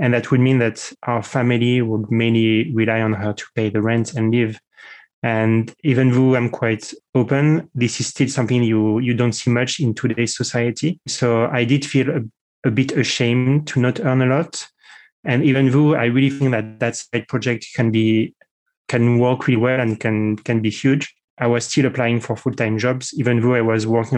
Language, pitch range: English, 115-130 Hz